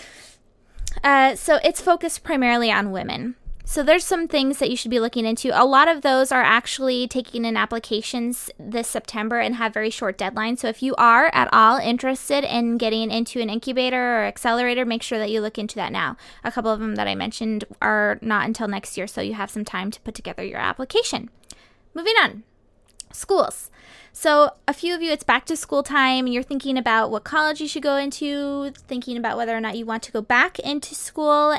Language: English